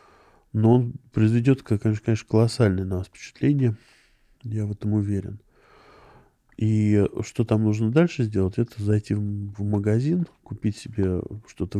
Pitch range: 100-130 Hz